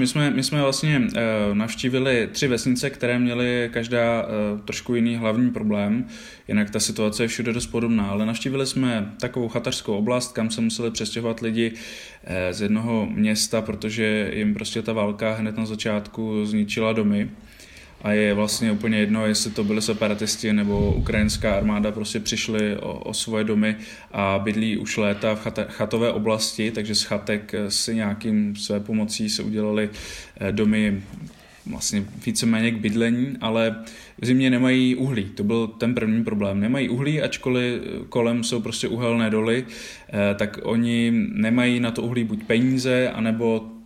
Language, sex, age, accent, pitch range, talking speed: Czech, male, 20-39, native, 105-120 Hz, 155 wpm